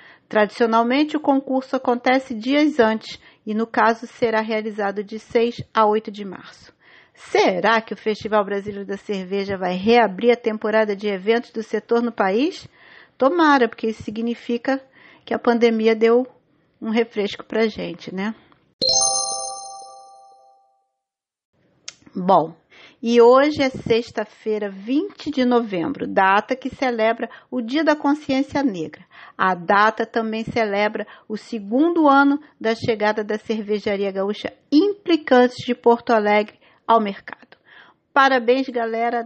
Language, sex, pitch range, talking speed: Portuguese, female, 210-255 Hz, 130 wpm